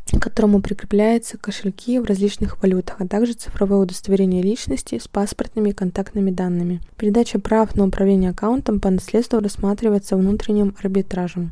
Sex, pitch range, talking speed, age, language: female, 195-225 Hz, 140 wpm, 20-39, Russian